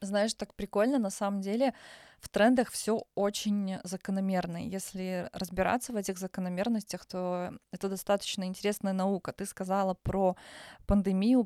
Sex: female